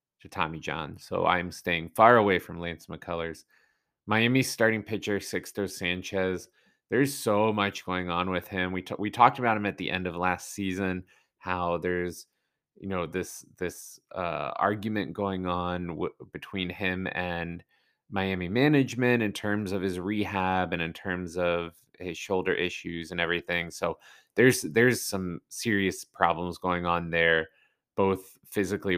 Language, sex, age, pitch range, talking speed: English, male, 20-39, 90-105 Hz, 155 wpm